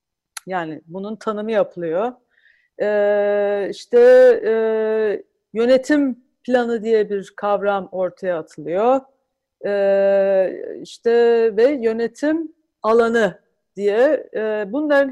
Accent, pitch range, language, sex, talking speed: native, 210-275 Hz, Turkish, female, 85 wpm